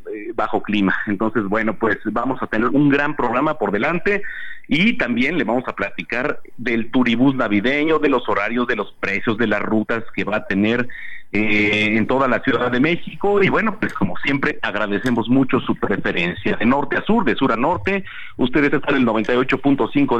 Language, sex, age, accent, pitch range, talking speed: Spanish, male, 40-59, Mexican, 105-135 Hz, 190 wpm